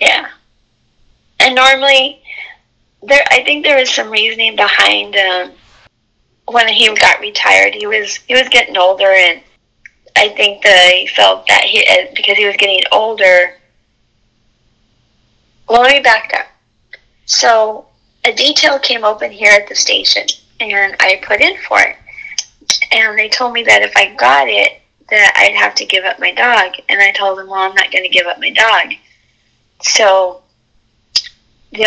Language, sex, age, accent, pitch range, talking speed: English, female, 30-49, American, 190-240 Hz, 160 wpm